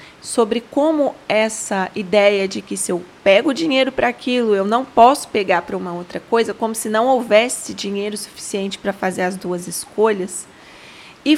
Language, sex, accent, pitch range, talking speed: Portuguese, female, Brazilian, 200-255 Hz, 170 wpm